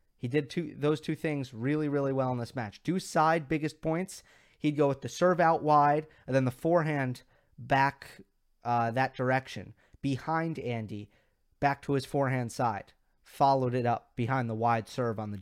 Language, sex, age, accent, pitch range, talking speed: English, male, 30-49, American, 125-170 Hz, 180 wpm